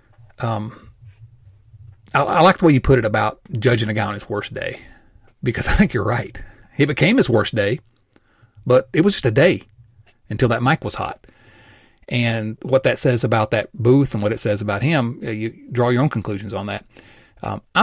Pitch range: 110-130 Hz